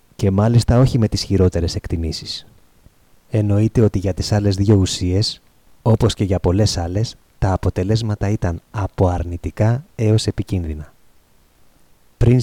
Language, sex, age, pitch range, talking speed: Greek, male, 30-49, 90-110 Hz, 130 wpm